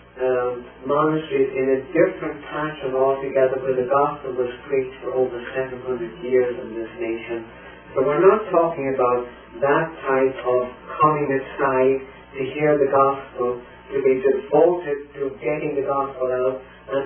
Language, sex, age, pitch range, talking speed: English, male, 40-59, 125-145 Hz, 150 wpm